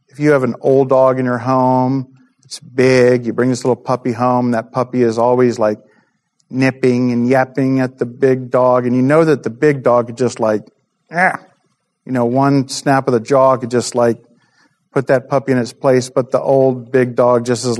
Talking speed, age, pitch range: 210 wpm, 40-59, 120-130 Hz